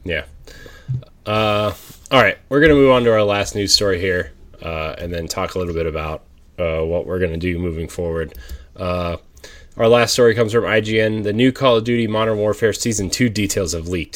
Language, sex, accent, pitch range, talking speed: English, male, American, 85-110 Hz, 210 wpm